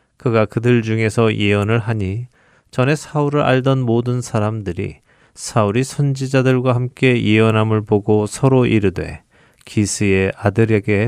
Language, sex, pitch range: Korean, male, 105-125 Hz